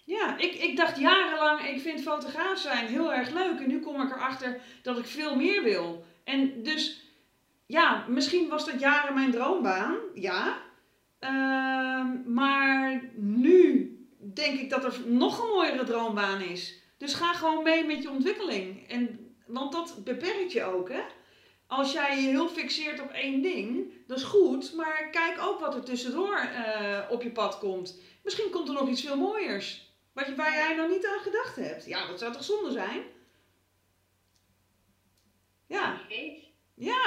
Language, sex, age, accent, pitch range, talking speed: Dutch, female, 40-59, Dutch, 230-320 Hz, 165 wpm